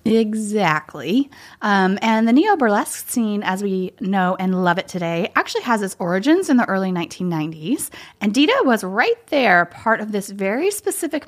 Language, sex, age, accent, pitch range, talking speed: English, female, 20-39, American, 185-255 Hz, 165 wpm